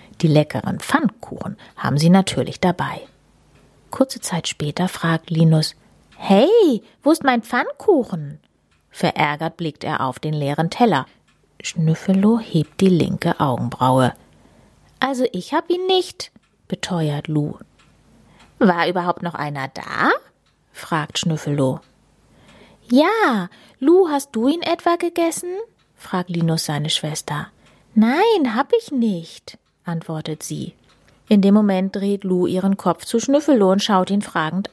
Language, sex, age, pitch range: German, female, 30-49, 160-265 Hz